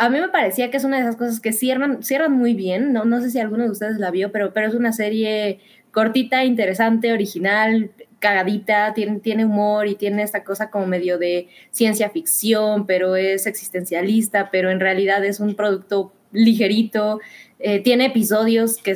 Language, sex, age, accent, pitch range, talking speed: Spanish, female, 20-39, Mexican, 200-250 Hz, 185 wpm